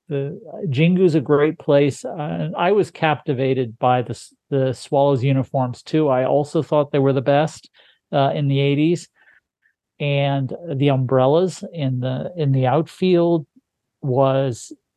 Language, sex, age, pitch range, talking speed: English, male, 50-69, 130-150 Hz, 145 wpm